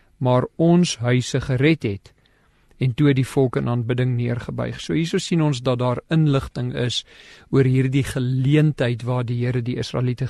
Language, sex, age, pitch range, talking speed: English, male, 50-69, 125-150 Hz, 165 wpm